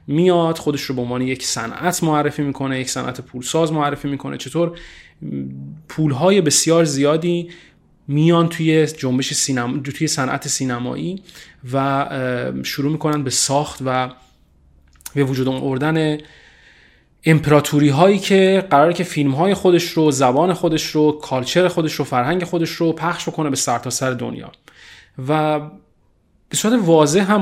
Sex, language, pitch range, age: male, Persian, 130-170 Hz, 30-49